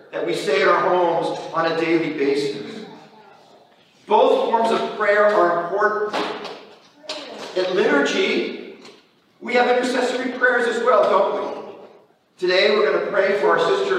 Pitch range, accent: 180-265 Hz, American